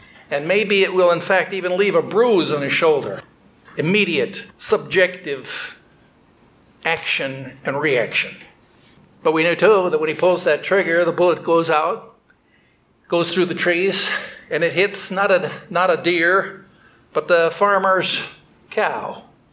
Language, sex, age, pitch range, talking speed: English, male, 60-79, 165-190 Hz, 145 wpm